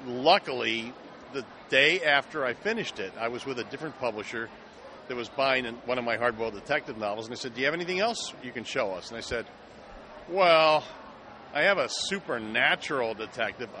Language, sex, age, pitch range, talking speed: English, male, 50-69, 125-160 Hz, 185 wpm